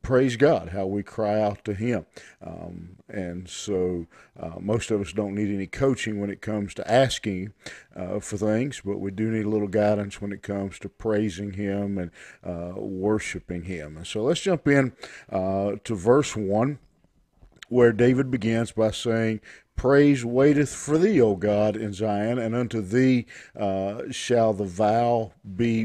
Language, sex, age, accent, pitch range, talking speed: English, male, 50-69, American, 105-130 Hz, 170 wpm